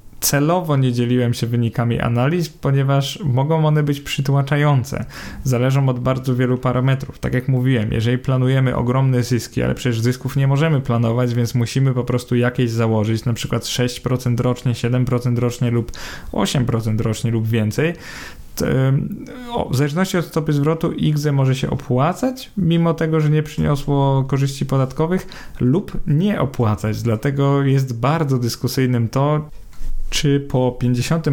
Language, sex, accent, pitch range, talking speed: Polish, male, native, 120-145 Hz, 140 wpm